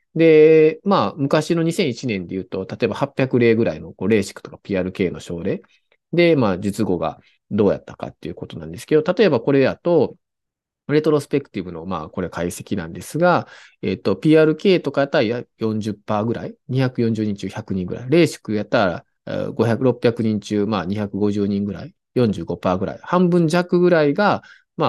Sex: male